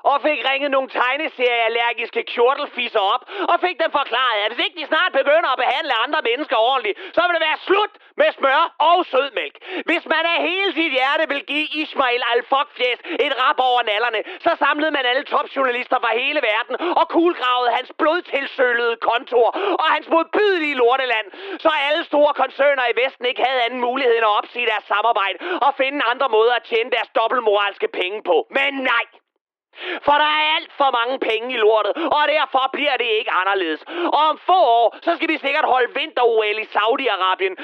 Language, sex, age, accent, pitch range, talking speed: Danish, male, 30-49, native, 235-315 Hz, 185 wpm